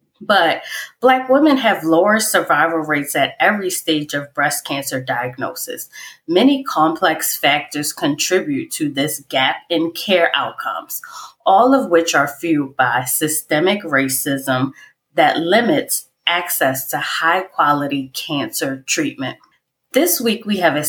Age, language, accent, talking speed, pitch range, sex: 20-39, English, American, 125 wpm, 155-225 Hz, female